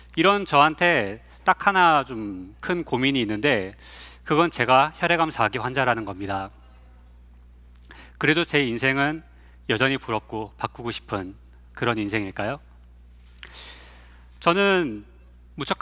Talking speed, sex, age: 90 wpm, male, 40-59